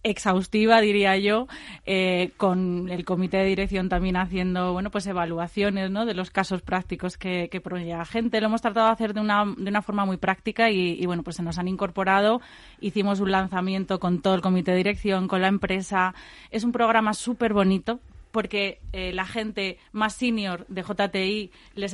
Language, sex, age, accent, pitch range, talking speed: Spanish, female, 30-49, Spanish, 180-205 Hz, 190 wpm